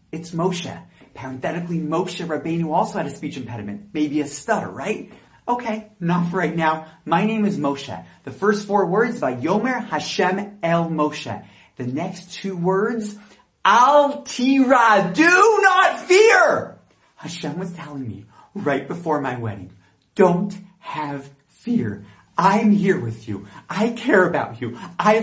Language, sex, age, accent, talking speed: English, male, 30-49, American, 145 wpm